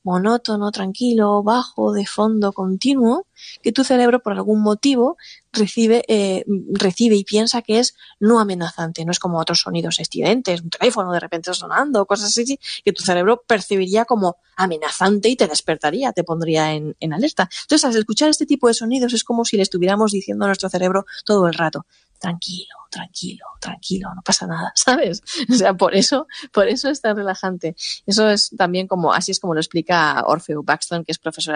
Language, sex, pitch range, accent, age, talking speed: Spanish, female, 170-220 Hz, Spanish, 20-39, 185 wpm